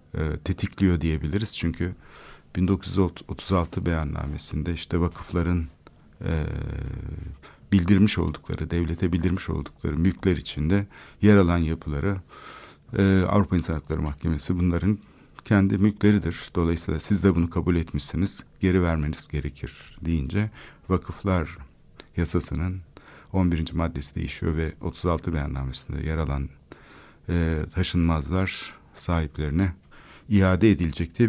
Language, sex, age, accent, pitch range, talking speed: Turkish, male, 60-79, native, 80-100 Hz, 100 wpm